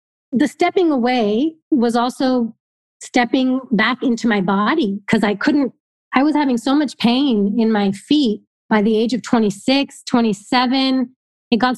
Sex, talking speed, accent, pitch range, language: female, 155 wpm, American, 220-270 Hz, English